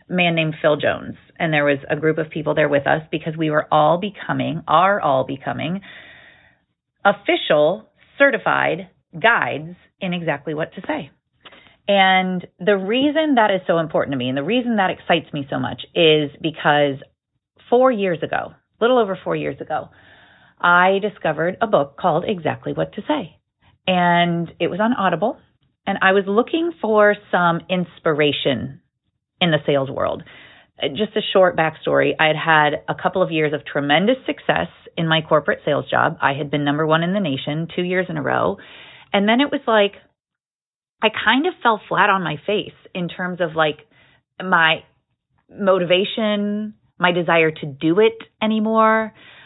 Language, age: English, 30-49